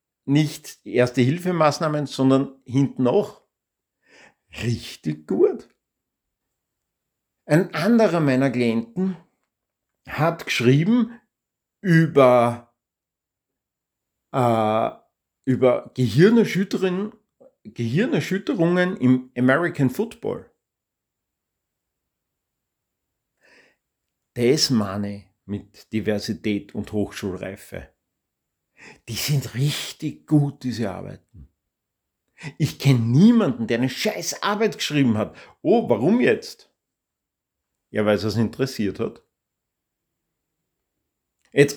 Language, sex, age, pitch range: German, male, 50-69, 115-155 Hz